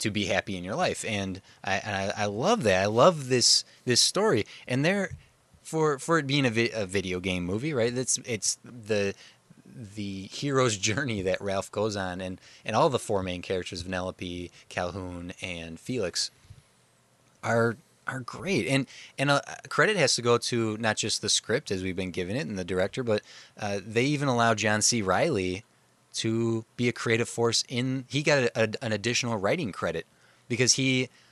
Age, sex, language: 20-39, male, English